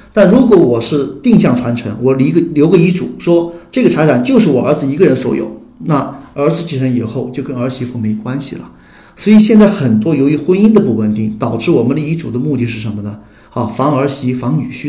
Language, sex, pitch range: Chinese, male, 120-165 Hz